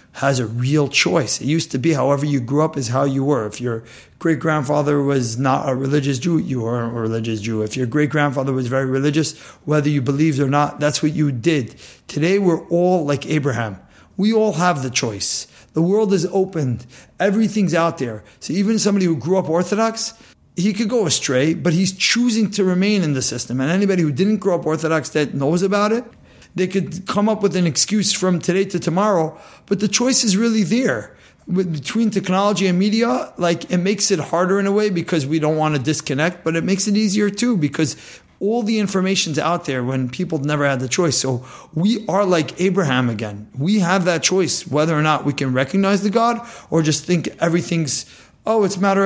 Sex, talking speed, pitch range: male, 210 wpm, 140-195 Hz